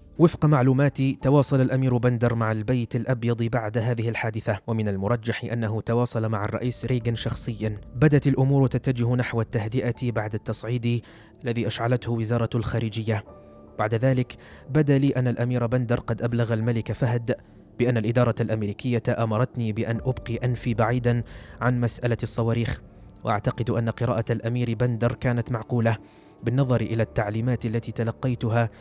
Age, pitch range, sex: 20-39, 110-125 Hz, male